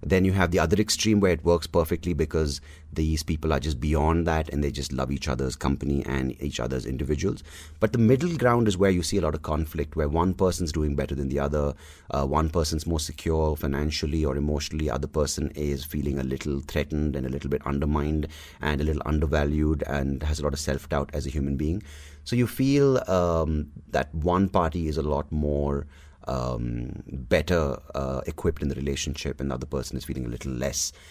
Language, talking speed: English, 210 wpm